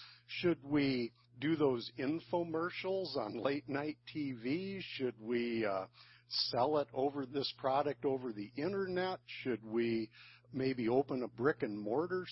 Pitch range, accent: 120-165 Hz, American